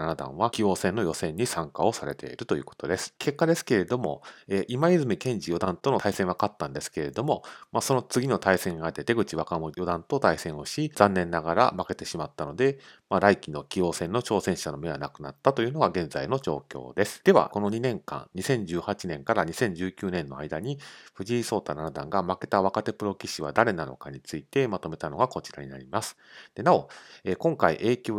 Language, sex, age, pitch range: Japanese, male, 40-59, 85-120 Hz